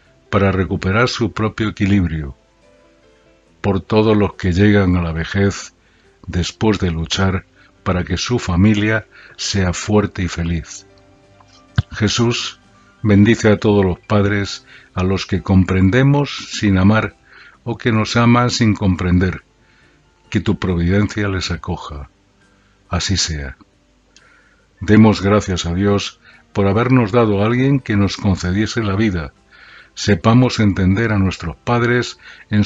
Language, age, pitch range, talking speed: Portuguese, 60-79, 95-110 Hz, 125 wpm